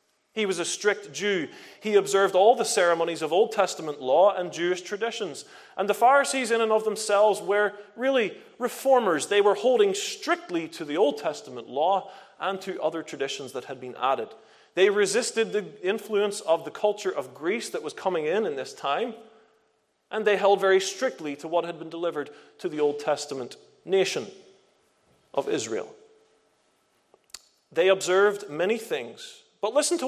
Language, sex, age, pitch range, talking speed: English, male, 30-49, 165-225 Hz, 170 wpm